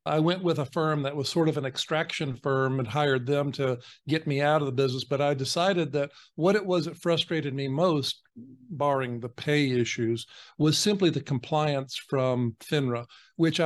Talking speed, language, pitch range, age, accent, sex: 195 wpm, English, 135-160 Hz, 50-69, American, male